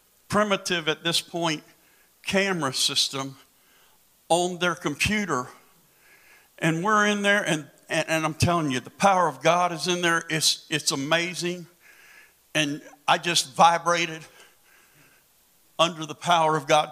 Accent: American